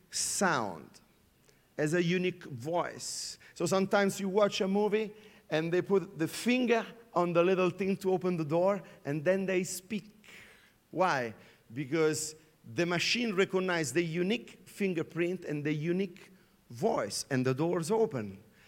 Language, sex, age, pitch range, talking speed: English, male, 50-69, 170-235 Hz, 140 wpm